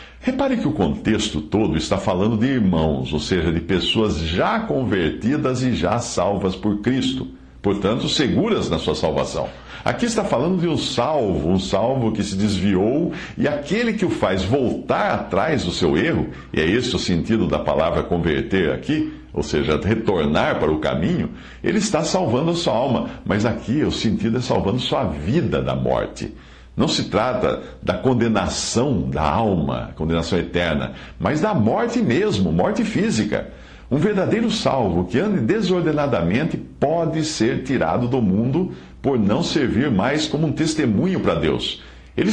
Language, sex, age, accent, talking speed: Portuguese, male, 60-79, Brazilian, 160 wpm